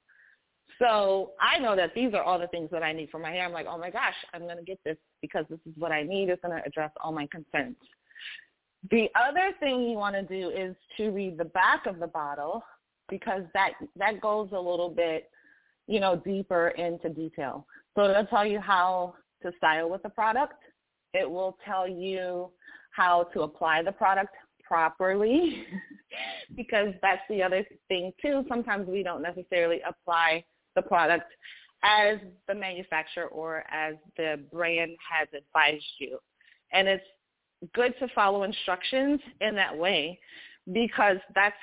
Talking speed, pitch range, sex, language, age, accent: 175 wpm, 165-205 Hz, female, English, 30-49, American